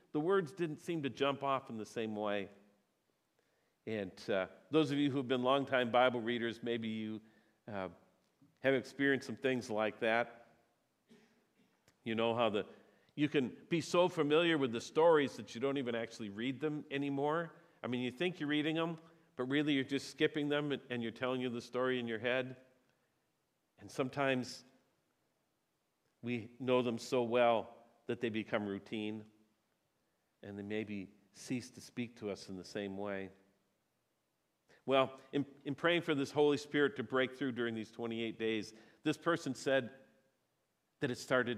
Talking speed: 170 wpm